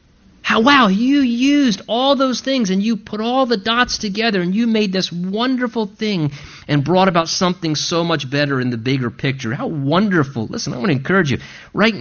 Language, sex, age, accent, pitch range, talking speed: English, male, 50-69, American, 145-235 Hz, 200 wpm